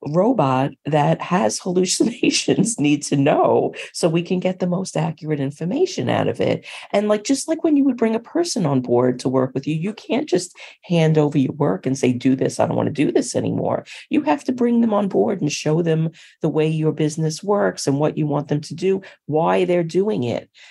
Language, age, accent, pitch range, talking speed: English, 40-59, American, 145-210 Hz, 225 wpm